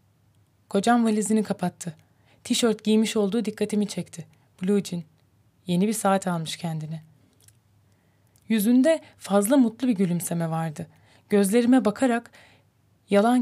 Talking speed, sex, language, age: 105 wpm, female, Turkish, 30-49